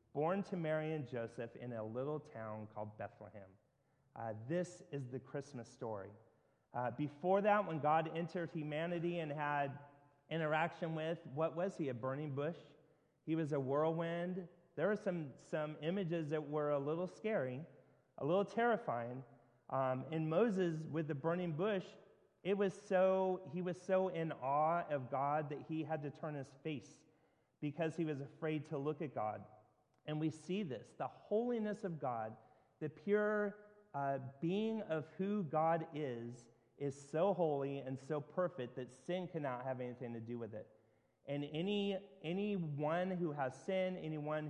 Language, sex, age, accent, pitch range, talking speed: English, male, 30-49, American, 135-175 Hz, 165 wpm